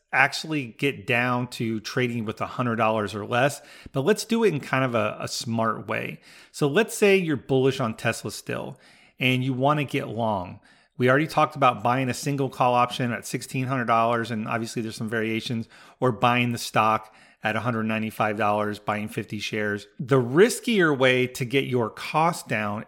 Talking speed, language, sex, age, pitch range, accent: 190 wpm, English, male, 40-59, 115-145 Hz, American